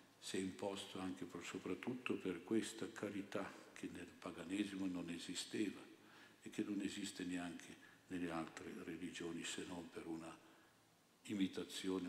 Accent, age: native, 60-79